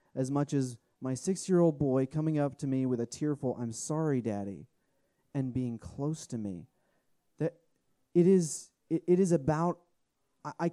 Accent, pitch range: American, 130-170 Hz